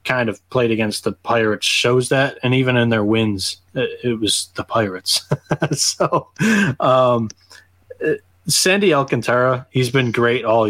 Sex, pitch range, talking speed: male, 110-125 Hz, 140 wpm